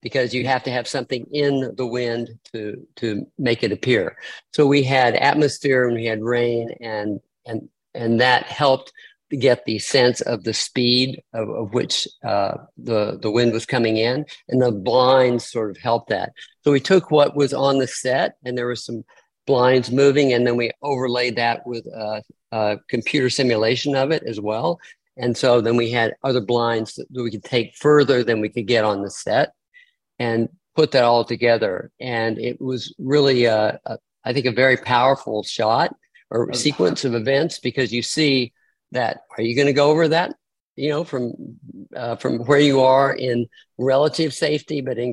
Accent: American